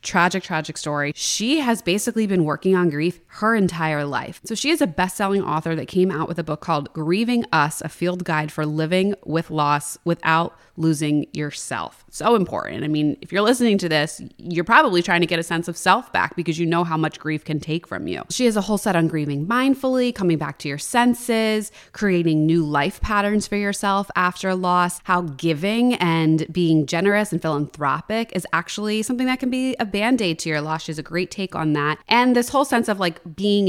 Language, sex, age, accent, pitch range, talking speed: English, female, 20-39, American, 160-215 Hz, 215 wpm